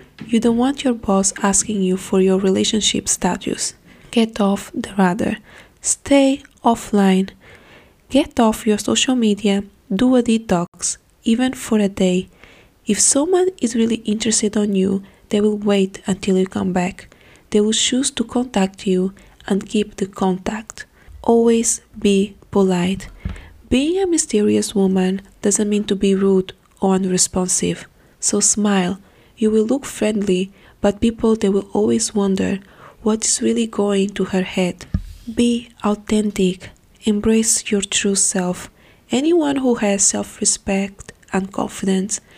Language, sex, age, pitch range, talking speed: English, female, 20-39, 195-230 Hz, 140 wpm